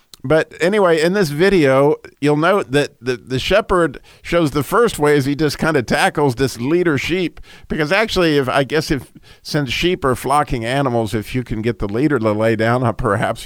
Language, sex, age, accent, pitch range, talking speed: English, male, 50-69, American, 125-155 Hz, 200 wpm